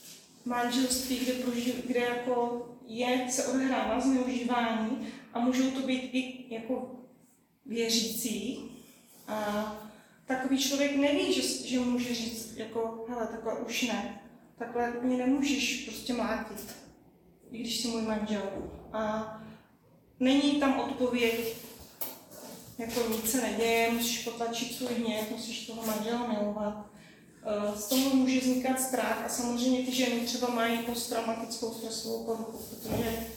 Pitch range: 230-260 Hz